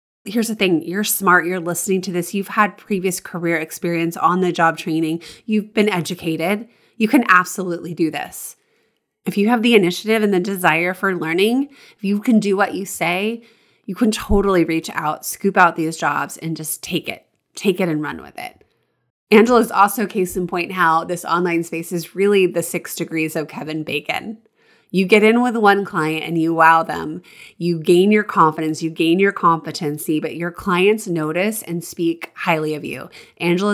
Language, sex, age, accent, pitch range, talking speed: English, female, 30-49, American, 170-205 Hz, 190 wpm